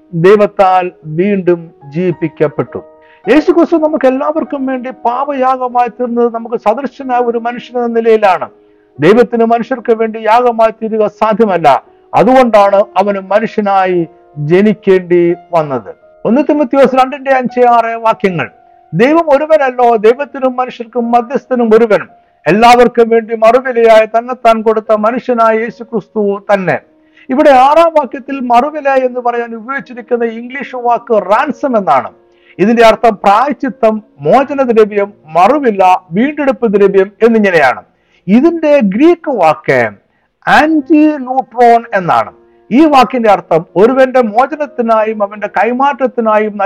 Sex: male